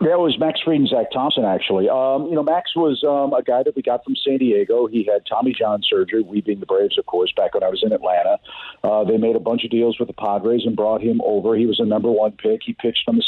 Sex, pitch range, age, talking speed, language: male, 110-155 Hz, 50-69, 290 wpm, English